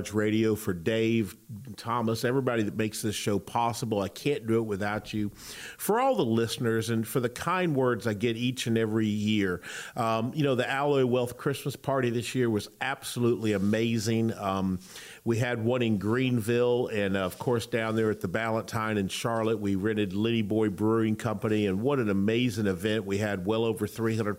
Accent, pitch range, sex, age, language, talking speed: American, 105-125 Hz, male, 50-69, English, 185 wpm